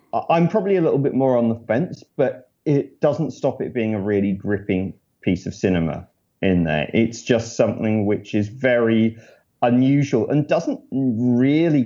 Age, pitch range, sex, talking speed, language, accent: 30-49, 100-130 Hz, male, 165 wpm, English, British